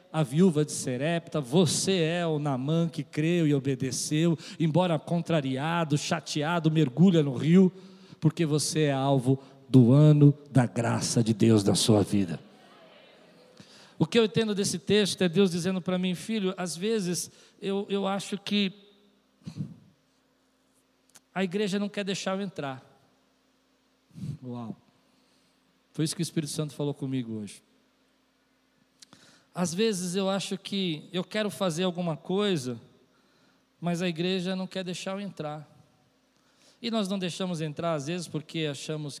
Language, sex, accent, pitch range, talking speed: Portuguese, male, Brazilian, 150-190 Hz, 140 wpm